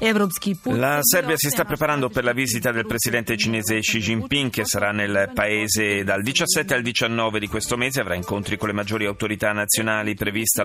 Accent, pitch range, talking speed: native, 100-125 Hz, 180 wpm